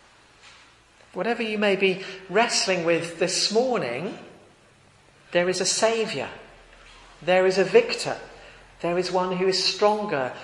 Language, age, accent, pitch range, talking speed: English, 40-59, British, 180-225 Hz, 125 wpm